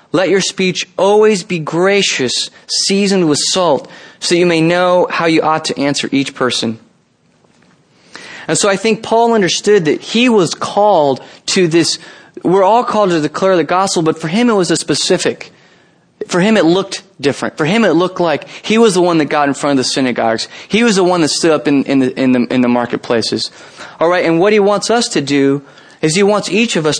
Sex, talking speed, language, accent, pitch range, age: male, 215 wpm, English, American, 145-190 Hz, 30-49